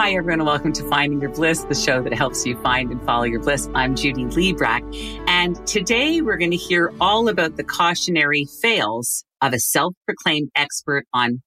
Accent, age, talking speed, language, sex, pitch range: American, 50-69, 195 wpm, English, female, 140-185 Hz